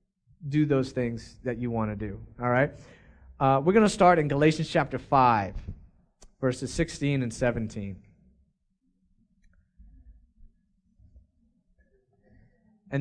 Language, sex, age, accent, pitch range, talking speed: English, male, 30-49, American, 120-180 Hz, 100 wpm